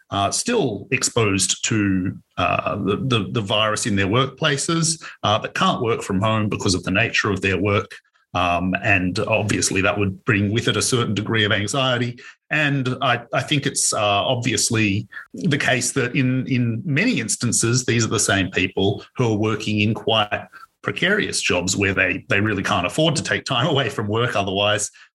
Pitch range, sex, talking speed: 105-140 Hz, male, 185 wpm